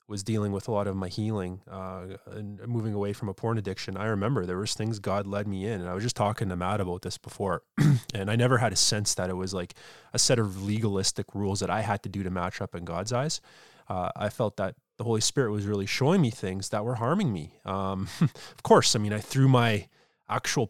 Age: 20-39